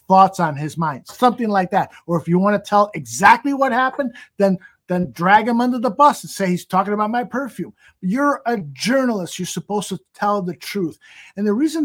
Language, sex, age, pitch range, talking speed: English, male, 50-69, 180-245 Hz, 215 wpm